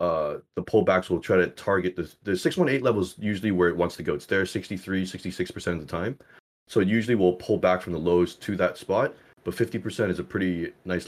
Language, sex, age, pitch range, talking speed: English, male, 30-49, 90-110 Hz, 235 wpm